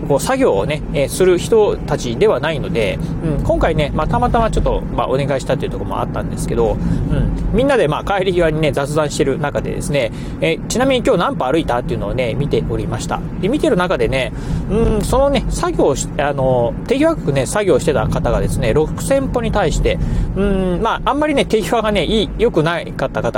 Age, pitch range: 40-59, 145-220 Hz